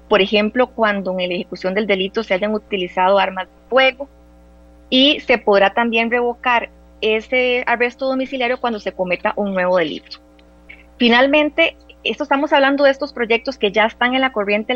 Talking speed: 165 wpm